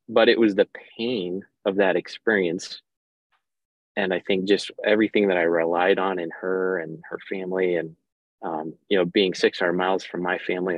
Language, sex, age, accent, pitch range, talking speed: English, male, 20-39, American, 85-95 Hz, 180 wpm